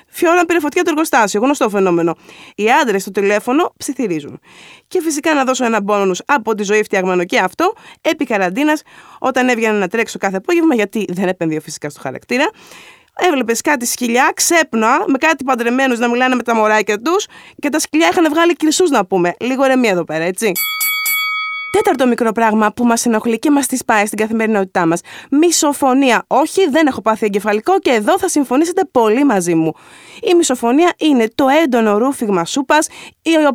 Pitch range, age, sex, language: 220-315 Hz, 20-39, female, Greek